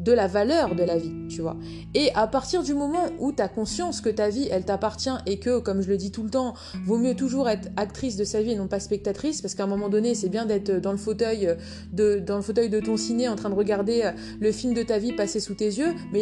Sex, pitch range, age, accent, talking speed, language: female, 200-245 Hz, 20-39, French, 280 wpm, French